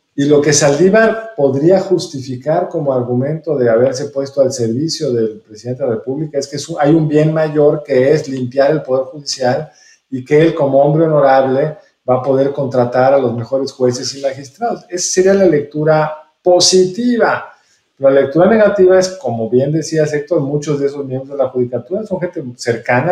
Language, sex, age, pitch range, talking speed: Spanish, male, 50-69, 130-185 Hz, 185 wpm